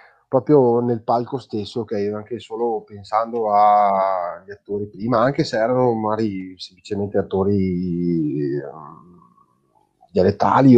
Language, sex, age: Italian, male, 30-49